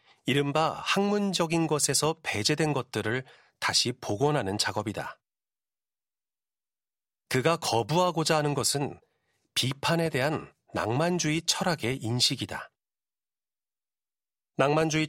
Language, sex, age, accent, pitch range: Korean, male, 40-59, native, 120-160 Hz